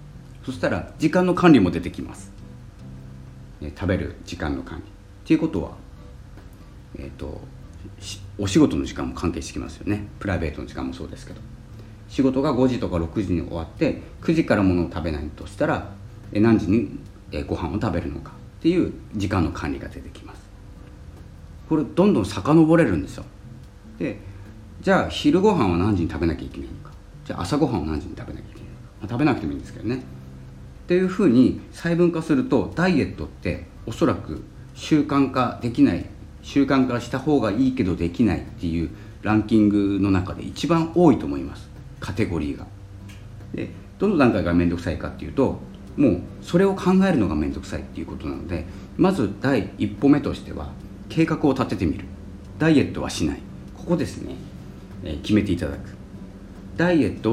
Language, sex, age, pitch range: Japanese, male, 40-59, 85-120 Hz